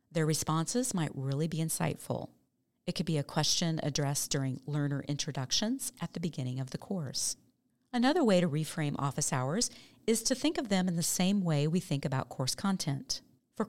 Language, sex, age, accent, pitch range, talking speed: English, female, 40-59, American, 145-190 Hz, 185 wpm